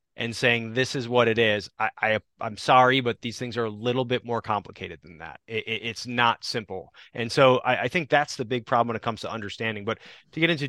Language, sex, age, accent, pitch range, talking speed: English, male, 20-39, American, 115-135 Hz, 255 wpm